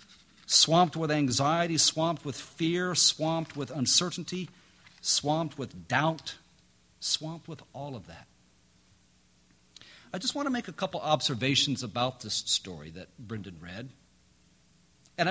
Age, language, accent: 50-69, English, American